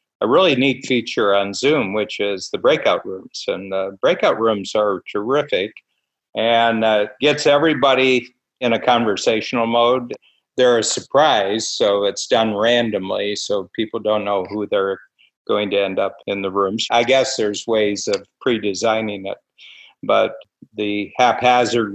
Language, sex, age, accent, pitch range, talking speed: English, male, 50-69, American, 100-120 Hz, 150 wpm